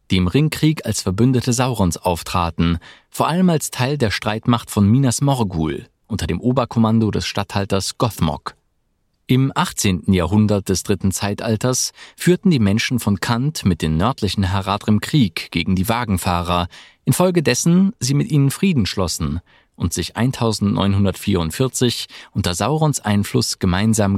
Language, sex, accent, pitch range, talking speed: German, male, German, 95-130 Hz, 135 wpm